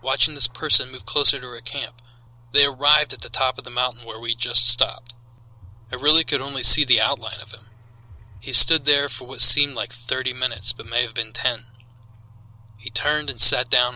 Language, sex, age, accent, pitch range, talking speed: English, male, 20-39, American, 115-130 Hz, 205 wpm